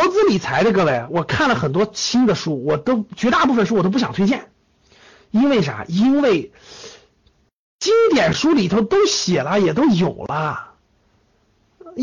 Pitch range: 190-295 Hz